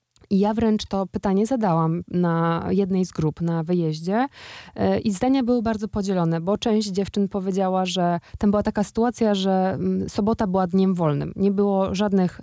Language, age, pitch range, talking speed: Polish, 20-39, 185-215 Hz, 165 wpm